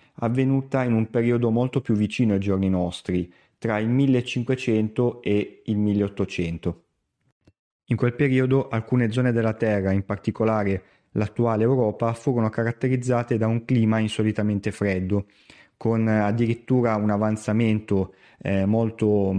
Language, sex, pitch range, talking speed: Italian, male, 100-120 Hz, 120 wpm